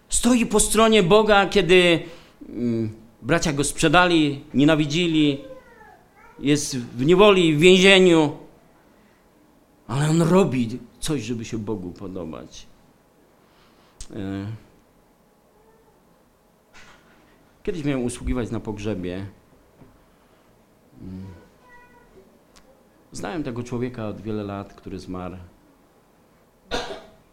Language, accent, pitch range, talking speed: Polish, native, 105-155 Hz, 75 wpm